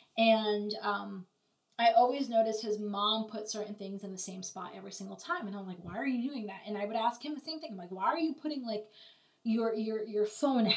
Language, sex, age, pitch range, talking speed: English, female, 20-39, 205-240 Hz, 245 wpm